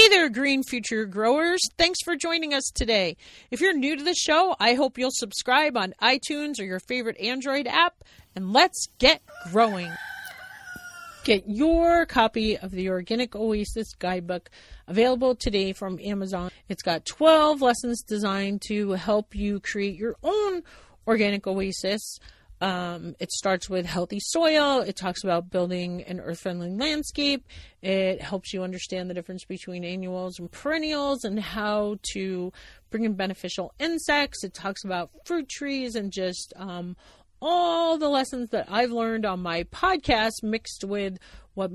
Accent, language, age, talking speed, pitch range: American, English, 40-59, 155 wpm, 185-270 Hz